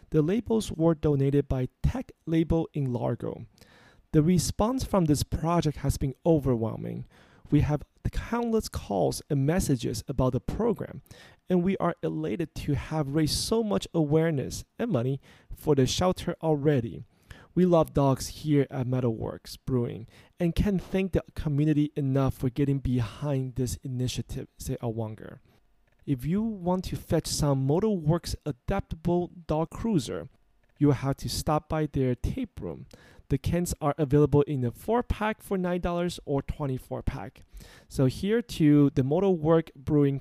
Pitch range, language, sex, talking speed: 130-165 Hz, English, male, 155 wpm